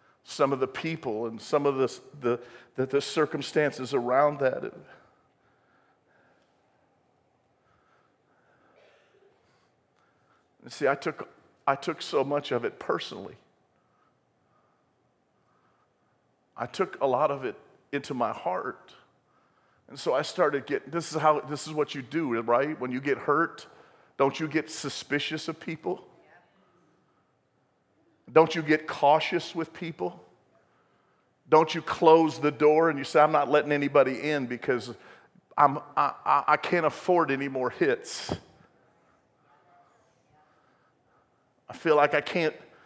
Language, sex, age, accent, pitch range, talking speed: English, male, 50-69, American, 135-160 Hz, 125 wpm